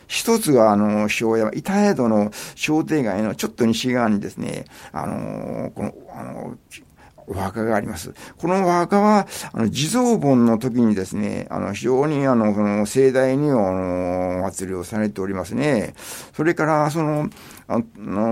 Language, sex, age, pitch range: Japanese, male, 60-79, 105-135 Hz